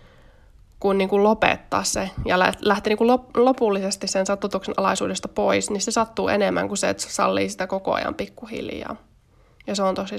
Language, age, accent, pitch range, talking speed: Finnish, 20-39, native, 185-225 Hz, 175 wpm